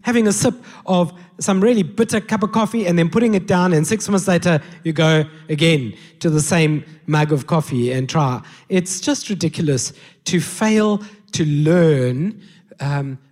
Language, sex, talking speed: English, male, 170 wpm